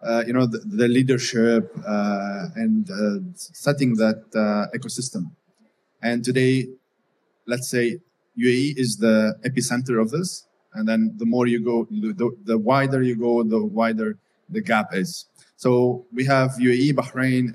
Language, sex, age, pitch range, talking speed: English, male, 30-49, 115-140 Hz, 150 wpm